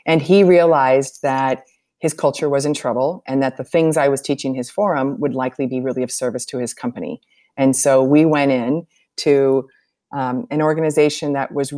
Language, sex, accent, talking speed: English, female, American, 195 wpm